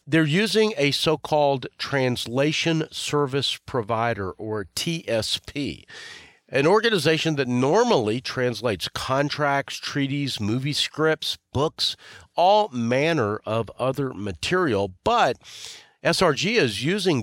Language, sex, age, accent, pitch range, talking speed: English, male, 50-69, American, 110-150 Hz, 100 wpm